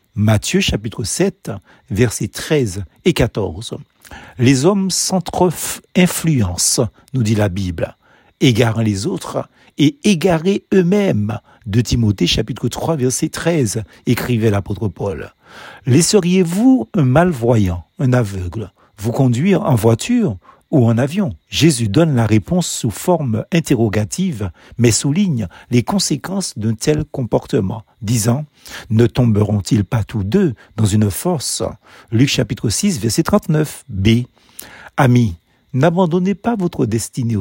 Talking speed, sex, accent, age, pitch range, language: 130 wpm, male, French, 60-79, 110-155 Hz, French